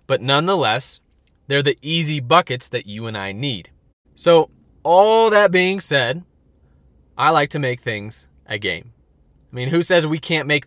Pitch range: 105-160 Hz